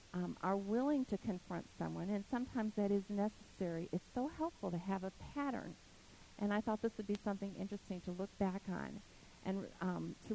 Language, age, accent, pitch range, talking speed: English, 50-69, American, 160-220 Hz, 190 wpm